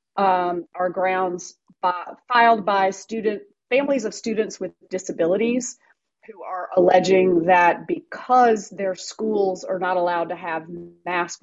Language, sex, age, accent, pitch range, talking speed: English, female, 30-49, American, 170-200 Hz, 125 wpm